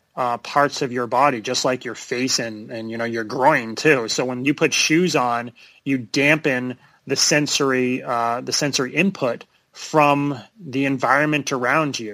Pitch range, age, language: 120-140 Hz, 30-49, English